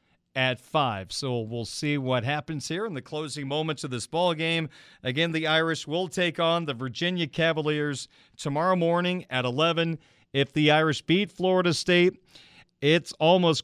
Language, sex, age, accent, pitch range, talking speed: English, male, 40-59, American, 140-170 Hz, 165 wpm